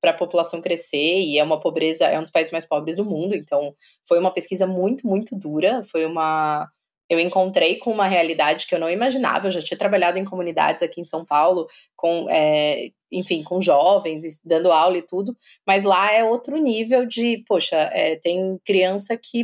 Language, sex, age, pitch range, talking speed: Portuguese, female, 20-39, 180-240 Hz, 200 wpm